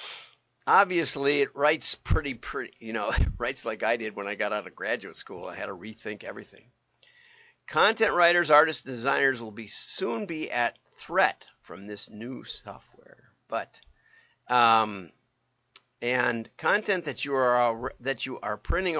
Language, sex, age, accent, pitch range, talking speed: English, male, 50-69, American, 105-140 Hz, 160 wpm